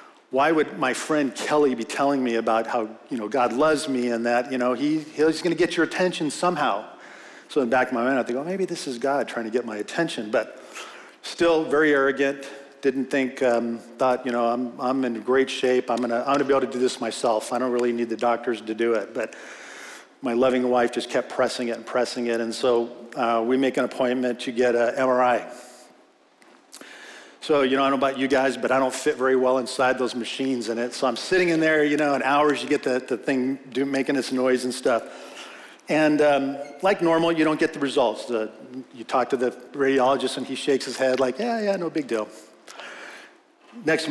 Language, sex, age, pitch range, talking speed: English, male, 50-69, 120-145 Hz, 230 wpm